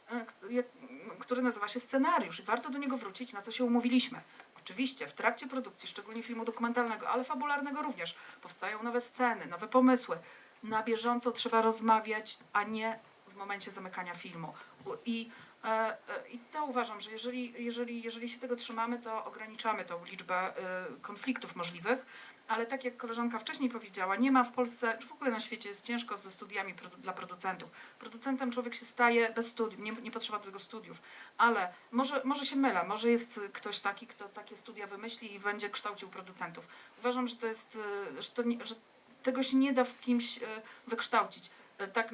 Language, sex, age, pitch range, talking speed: Polish, female, 40-59, 215-250 Hz, 170 wpm